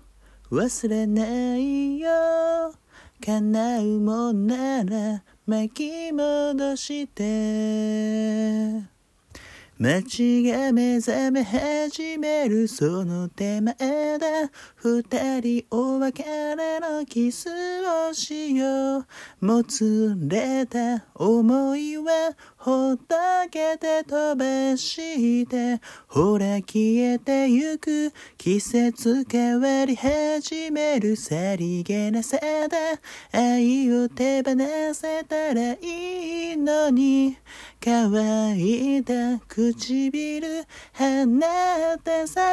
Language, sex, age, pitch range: Japanese, male, 40-59, 215-300 Hz